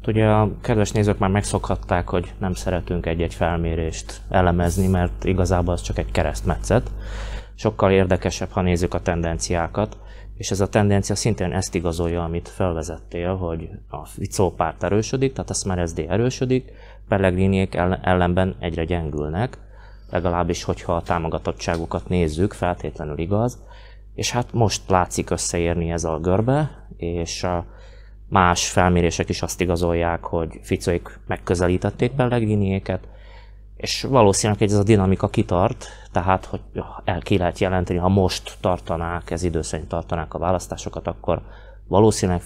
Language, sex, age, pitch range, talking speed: Hungarian, male, 20-39, 85-105 Hz, 135 wpm